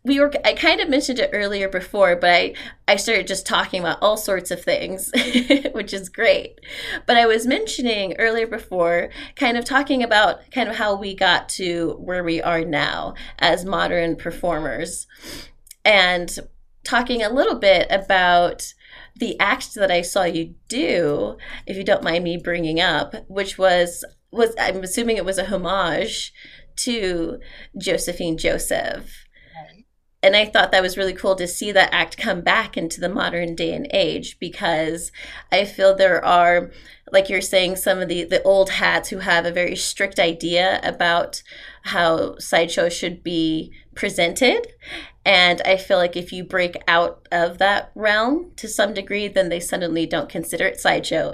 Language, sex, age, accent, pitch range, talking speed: English, female, 20-39, American, 175-225 Hz, 170 wpm